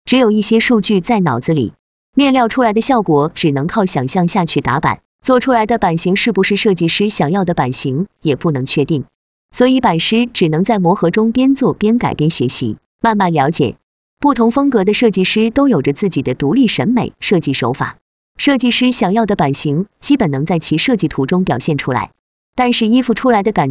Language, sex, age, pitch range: Chinese, female, 20-39, 155-230 Hz